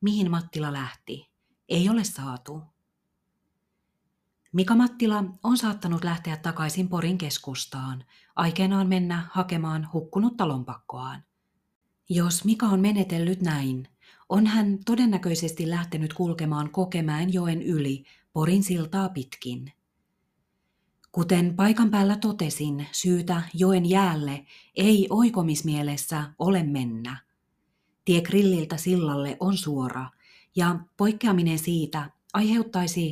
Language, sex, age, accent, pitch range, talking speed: Finnish, female, 30-49, native, 150-190 Hz, 100 wpm